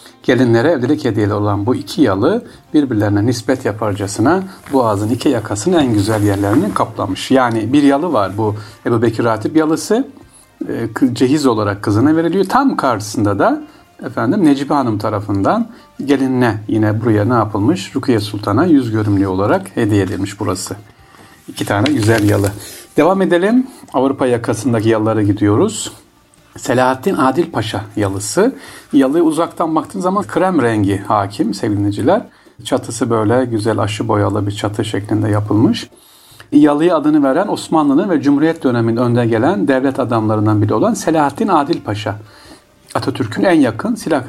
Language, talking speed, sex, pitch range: Turkish, 135 wpm, male, 105-155 Hz